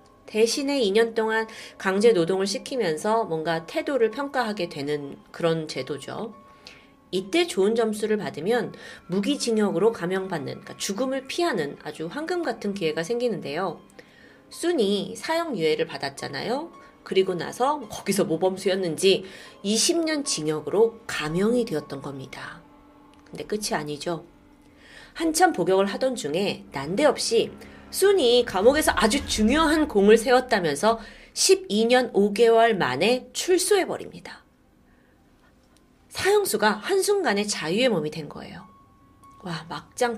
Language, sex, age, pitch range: Korean, female, 30-49, 175-260 Hz